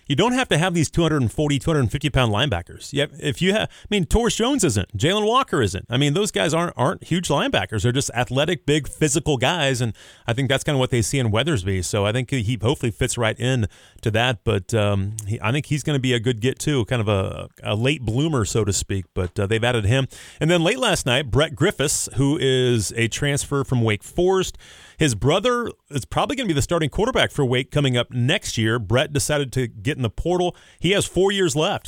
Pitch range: 120-160 Hz